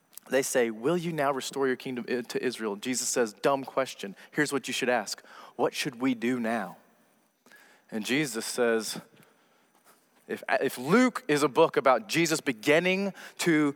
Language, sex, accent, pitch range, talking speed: English, male, American, 120-160 Hz, 160 wpm